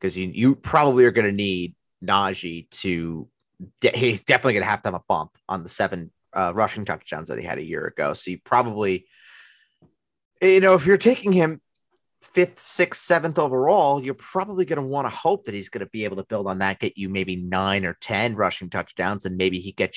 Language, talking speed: English, 220 wpm